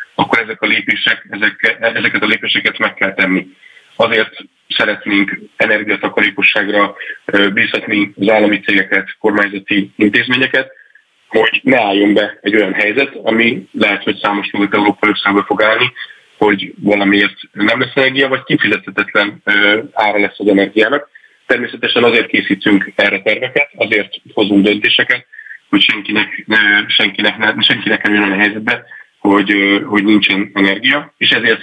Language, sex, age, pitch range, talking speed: Hungarian, male, 30-49, 100-110 Hz, 130 wpm